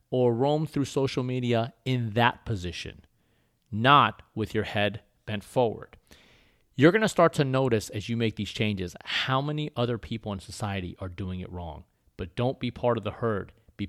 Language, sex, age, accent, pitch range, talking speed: English, male, 30-49, American, 105-130 Hz, 185 wpm